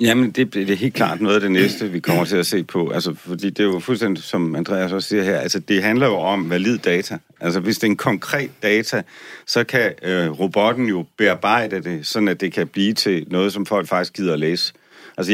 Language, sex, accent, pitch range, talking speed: Danish, male, native, 90-110 Hz, 240 wpm